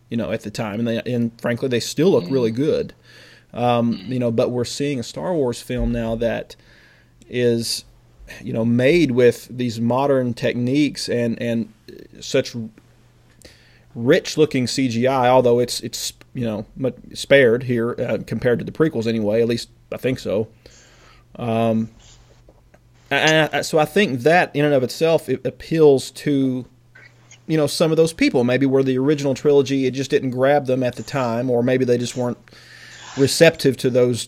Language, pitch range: English, 120-135 Hz